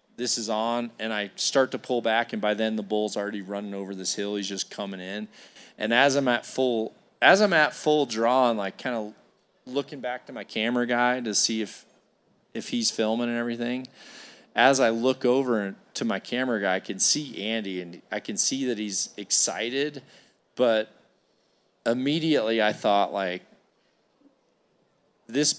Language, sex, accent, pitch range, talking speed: English, male, American, 100-125 Hz, 180 wpm